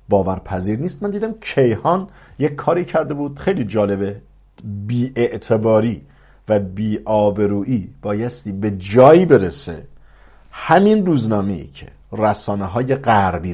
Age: 50-69